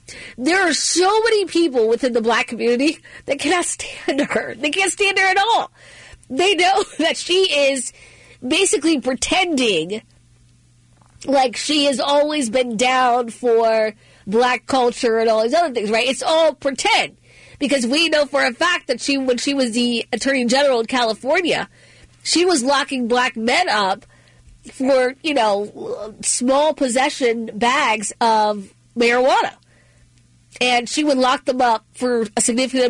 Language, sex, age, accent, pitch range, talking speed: English, female, 40-59, American, 220-285 Hz, 150 wpm